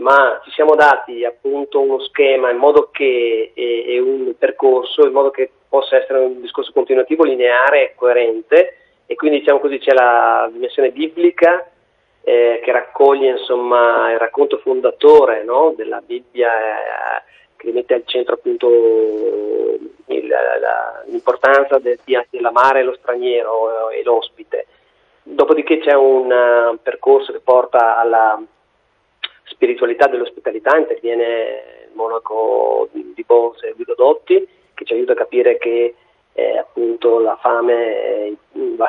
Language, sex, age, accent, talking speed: Italian, male, 30-49, native, 135 wpm